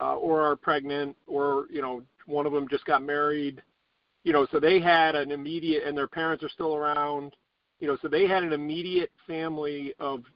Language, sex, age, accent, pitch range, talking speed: English, male, 50-69, American, 135-150 Hz, 205 wpm